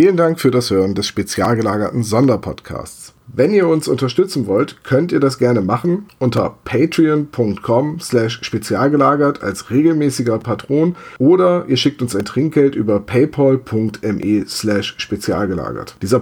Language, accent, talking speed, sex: German, German, 130 wpm, male